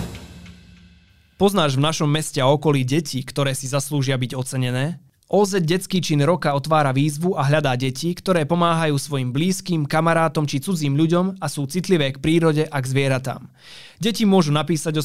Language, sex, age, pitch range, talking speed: Slovak, male, 20-39, 135-165 Hz, 170 wpm